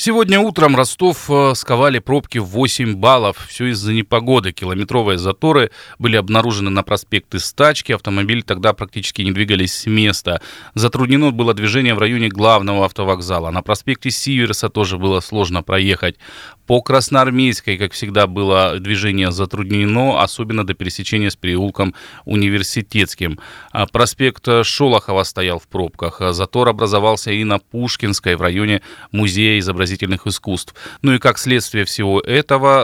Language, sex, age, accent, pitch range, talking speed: Russian, male, 20-39, native, 95-120 Hz, 130 wpm